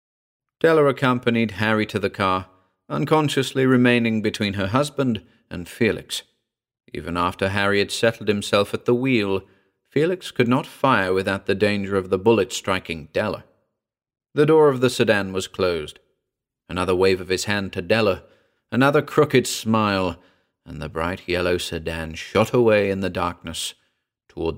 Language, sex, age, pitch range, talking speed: English, male, 40-59, 95-125 Hz, 150 wpm